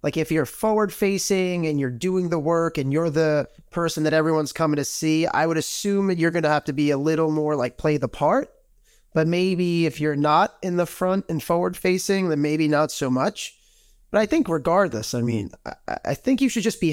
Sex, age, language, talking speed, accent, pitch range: male, 30-49, English, 230 wpm, American, 115-160 Hz